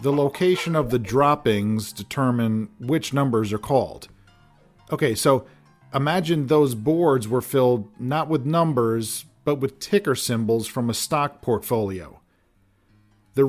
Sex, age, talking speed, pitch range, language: male, 40-59, 130 wpm, 115-150 Hz, English